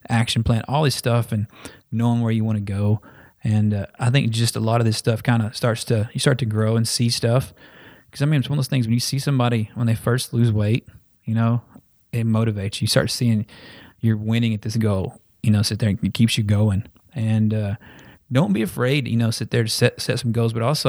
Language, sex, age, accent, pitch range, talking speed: English, male, 20-39, American, 110-120 Hz, 250 wpm